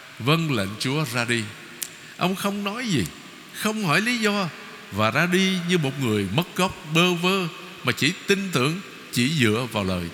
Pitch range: 125-185 Hz